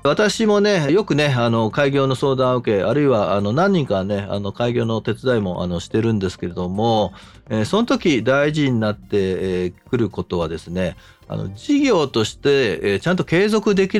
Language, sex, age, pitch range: Japanese, male, 40-59, 105-150 Hz